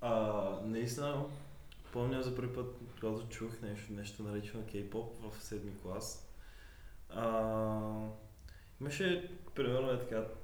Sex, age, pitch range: male, 20-39, 95-125 Hz